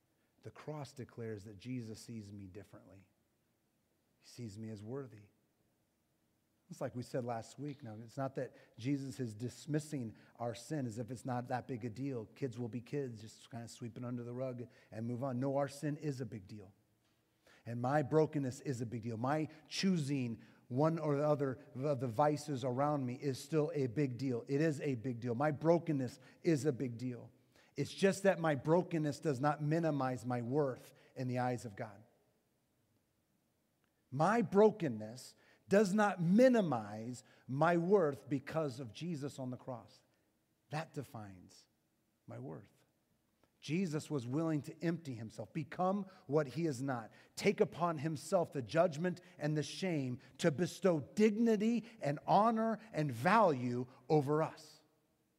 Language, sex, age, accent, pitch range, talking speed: English, male, 40-59, American, 120-155 Hz, 165 wpm